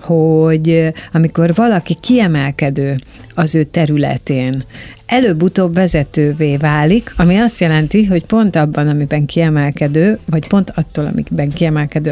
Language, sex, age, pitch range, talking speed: Hungarian, female, 60-79, 150-185 Hz, 115 wpm